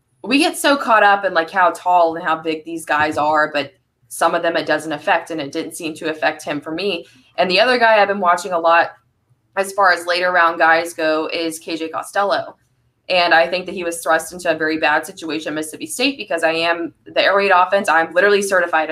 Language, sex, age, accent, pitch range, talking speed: English, female, 20-39, American, 165-210 Hz, 240 wpm